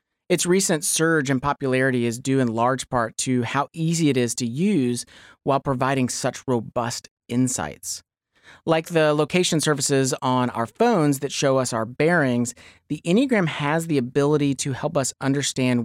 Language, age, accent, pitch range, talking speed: English, 30-49, American, 120-150 Hz, 165 wpm